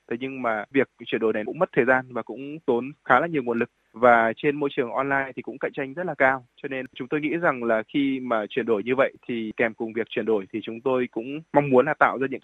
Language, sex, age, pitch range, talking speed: Vietnamese, male, 20-39, 120-150 Hz, 290 wpm